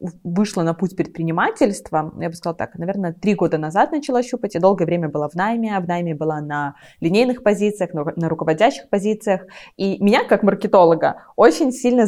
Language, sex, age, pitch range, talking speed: Russian, female, 20-39, 170-210 Hz, 180 wpm